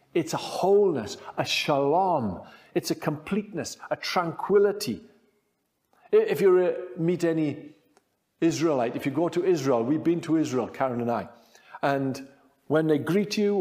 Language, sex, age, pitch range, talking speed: English, male, 50-69, 135-195 Hz, 140 wpm